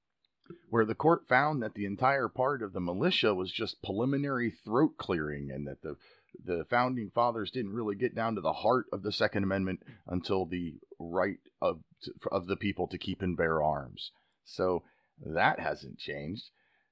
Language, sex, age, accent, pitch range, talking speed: English, male, 30-49, American, 90-140 Hz, 175 wpm